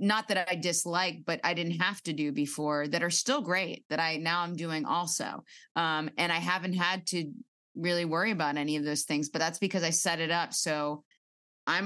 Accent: American